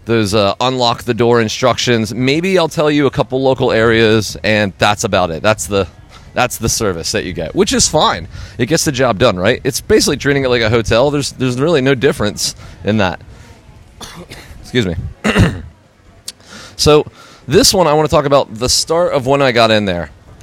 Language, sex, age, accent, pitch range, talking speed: English, male, 30-49, American, 105-140 Hz, 195 wpm